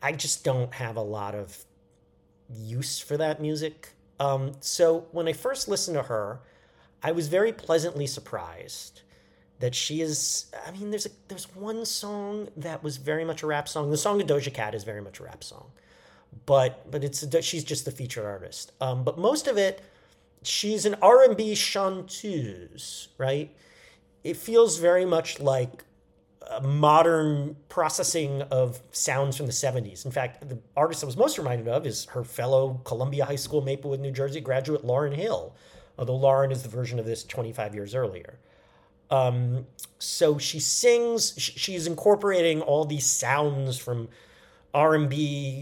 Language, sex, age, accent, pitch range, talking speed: English, male, 40-59, American, 125-160 Hz, 165 wpm